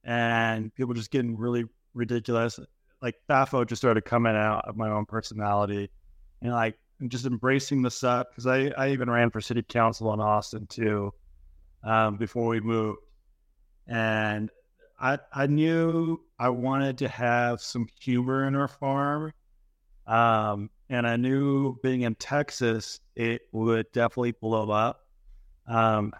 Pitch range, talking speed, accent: 105-125 Hz, 145 wpm, American